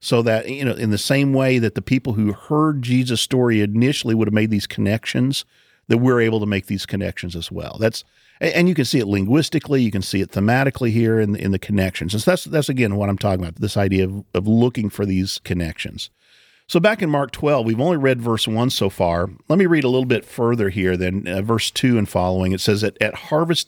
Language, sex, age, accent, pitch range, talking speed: English, male, 50-69, American, 95-130 Hz, 245 wpm